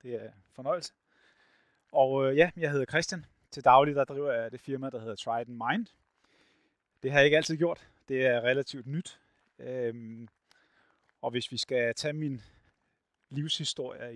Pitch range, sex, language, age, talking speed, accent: 110-135 Hz, male, Danish, 30-49, 160 wpm, native